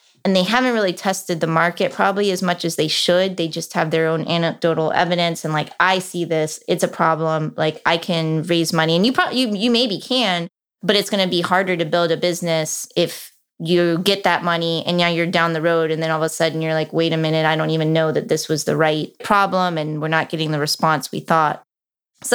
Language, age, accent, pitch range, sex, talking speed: English, 20-39, American, 160-180 Hz, female, 245 wpm